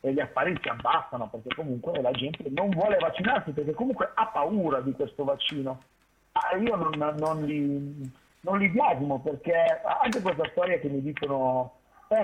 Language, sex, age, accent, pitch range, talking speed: Italian, male, 40-59, native, 140-200 Hz, 160 wpm